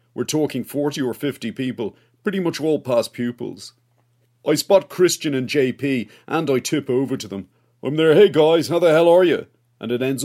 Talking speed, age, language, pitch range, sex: 200 wpm, 40-59, English, 120-155 Hz, male